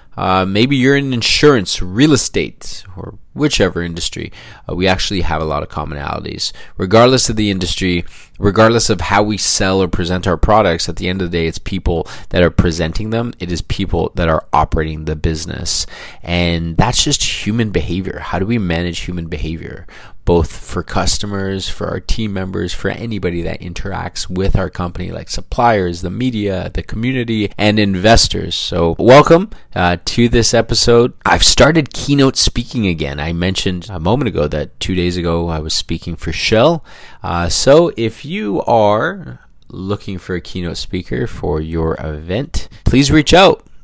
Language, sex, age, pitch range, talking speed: English, male, 20-39, 85-110 Hz, 170 wpm